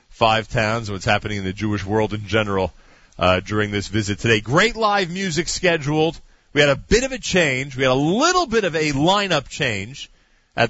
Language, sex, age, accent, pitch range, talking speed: English, male, 40-59, American, 110-170 Hz, 210 wpm